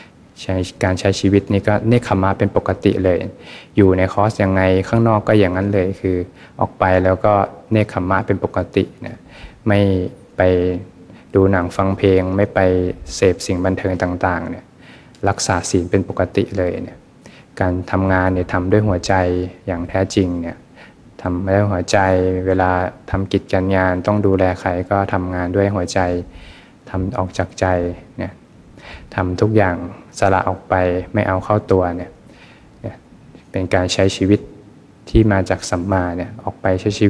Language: Thai